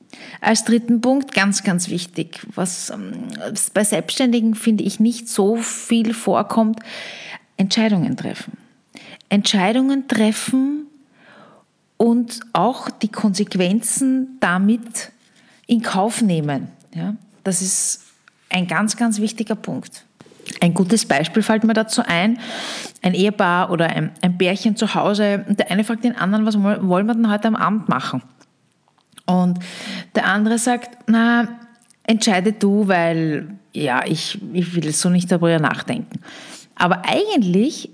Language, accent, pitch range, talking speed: German, Austrian, 185-235 Hz, 130 wpm